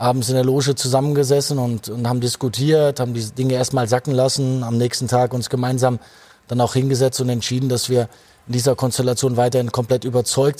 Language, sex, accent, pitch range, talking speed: German, male, German, 130-160 Hz, 185 wpm